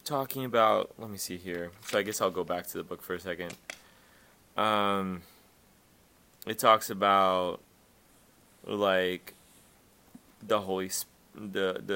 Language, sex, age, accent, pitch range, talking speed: English, male, 20-39, American, 90-105 Hz, 130 wpm